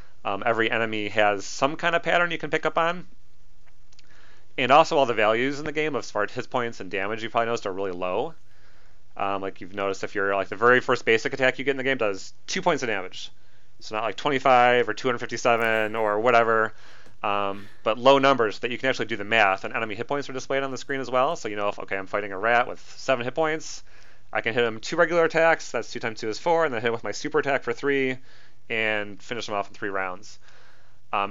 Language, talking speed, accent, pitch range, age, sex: English, 245 wpm, American, 100-130 Hz, 30-49, male